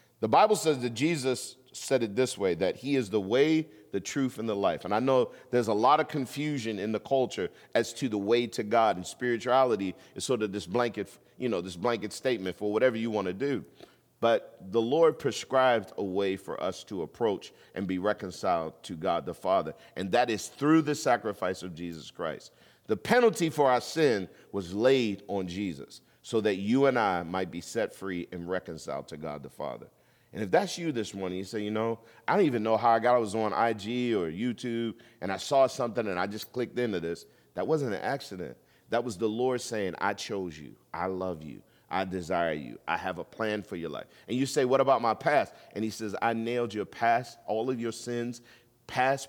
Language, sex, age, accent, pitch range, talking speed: English, male, 40-59, American, 95-125 Hz, 215 wpm